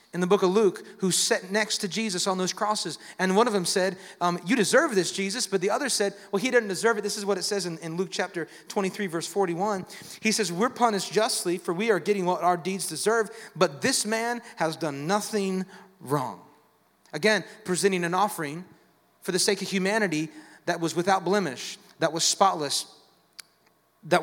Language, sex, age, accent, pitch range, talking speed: English, male, 30-49, American, 170-210 Hz, 200 wpm